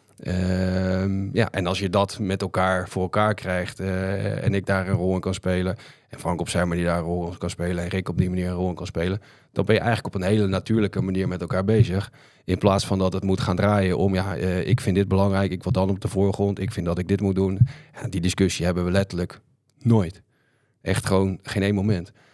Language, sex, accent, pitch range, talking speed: Dutch, male, Dutch, 90-105 Hz, 250 wpm